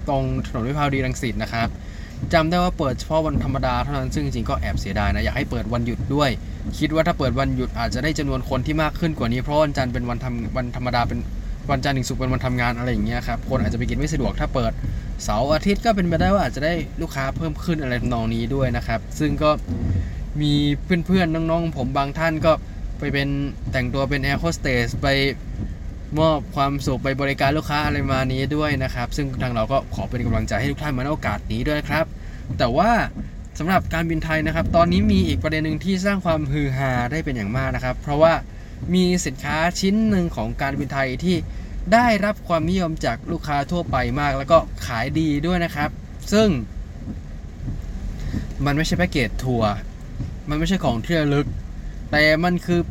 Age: 20-39